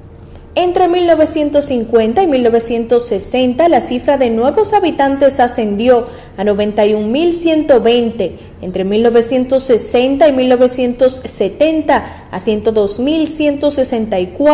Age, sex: 30-49, female